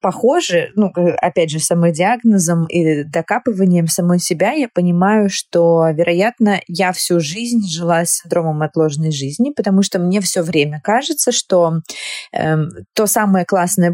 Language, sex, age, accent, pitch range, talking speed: Russian, female, 20-39, native, 160-195 Hz, 140 wpm